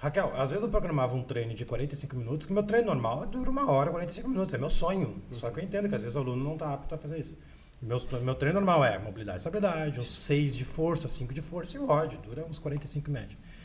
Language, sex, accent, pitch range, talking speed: Portuguese, male, Brazilian, 125-165 Hz, 255 wpm